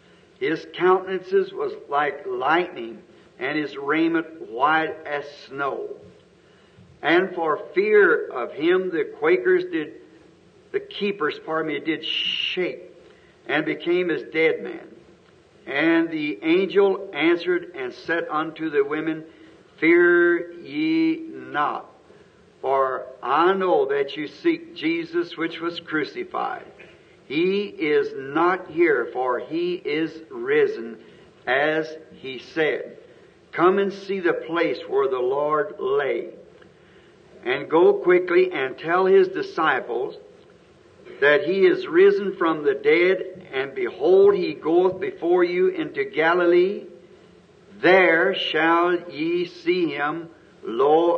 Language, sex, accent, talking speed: English, male, American, 115 wpm